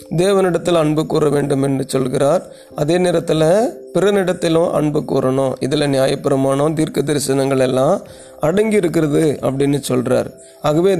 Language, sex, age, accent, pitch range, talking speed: Tamil, male, 30-49, native, 145-180 Hz, 115 wpm